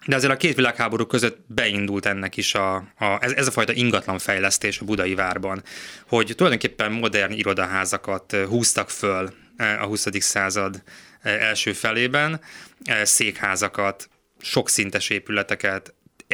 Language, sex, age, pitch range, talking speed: Hungarian, male, 20-39, 100-125 Hz, 125 wpm